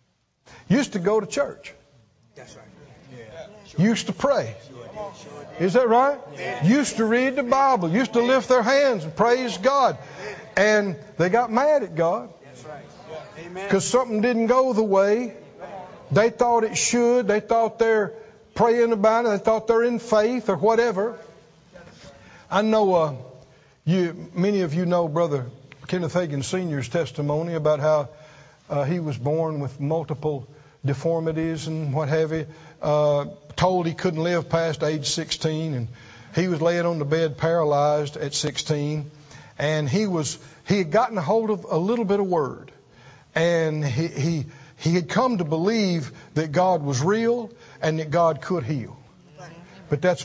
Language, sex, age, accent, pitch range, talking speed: English, male, 60-79, American, 150-215 Hz, 155 wpm